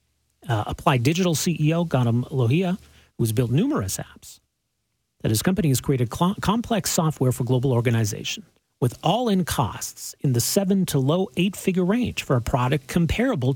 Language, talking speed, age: English, 160 wpm, 40-59